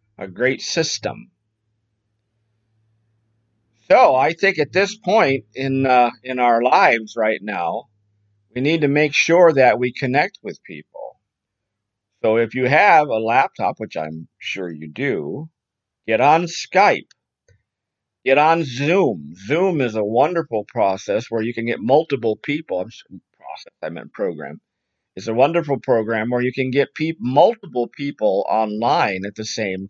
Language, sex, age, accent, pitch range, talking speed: English, male, 50-69, American, 110-145 Hz, 150 wpm